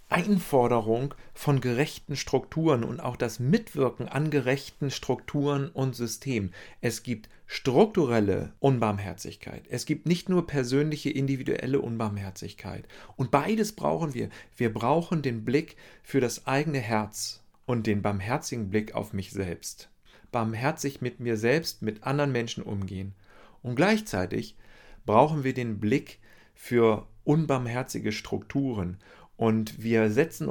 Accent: German